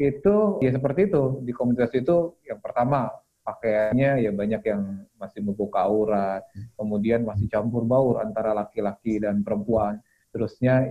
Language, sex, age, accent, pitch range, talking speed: Indonesian, male, 30-49, native, 110-135 Hz, 140 wpm